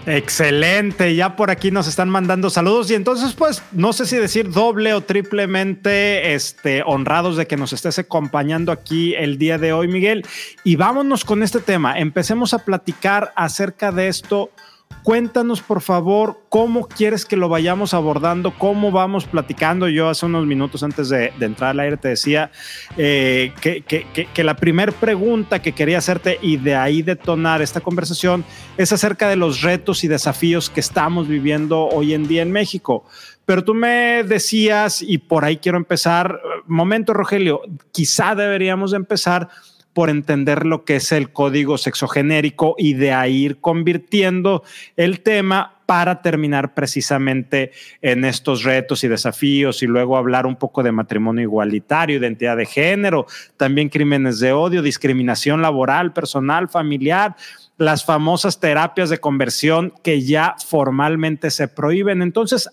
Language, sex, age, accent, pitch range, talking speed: Spanish, male, 40-59, Mexican, 145-195 Hz, 160 wpm